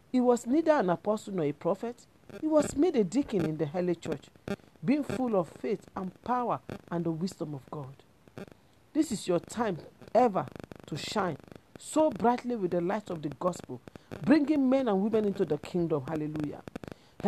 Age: 50-69